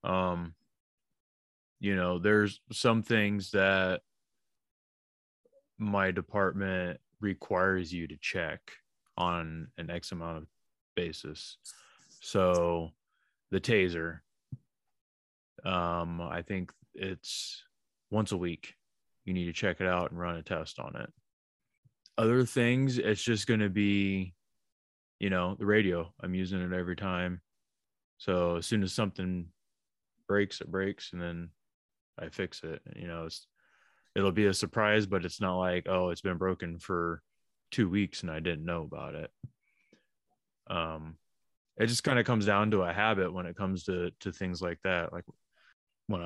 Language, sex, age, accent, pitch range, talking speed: English, male, 20-39, American, 85-105 Hz, 150 wpm